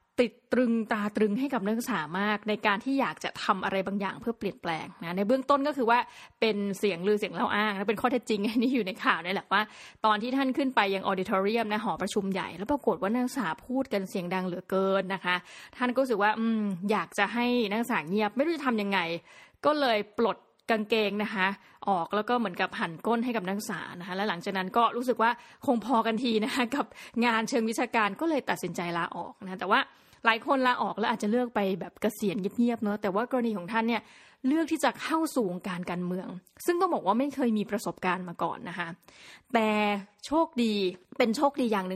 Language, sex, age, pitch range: Thai, female, 20-39, 195-245 Hz